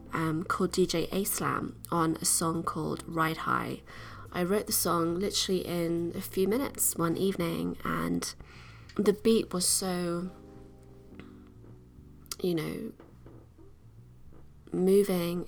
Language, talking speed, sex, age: English, 110 wpm, female, 20-39